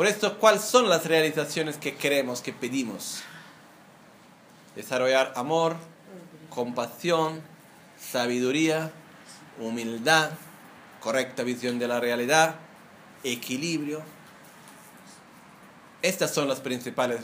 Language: Italian